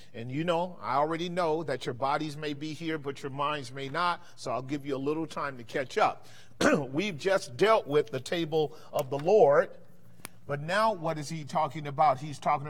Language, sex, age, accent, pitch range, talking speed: English, male, 40-59, American, 150-185 Hz, 215 wpm